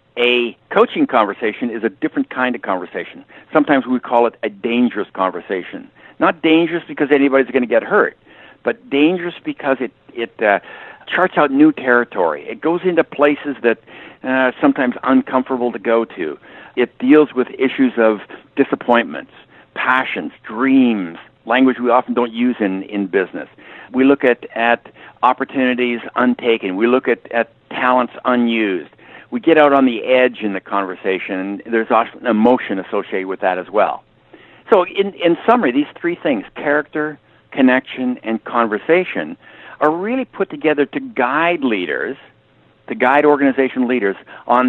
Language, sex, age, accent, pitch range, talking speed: English, male, 60-79, American, 120-150 Hz, 155 wpm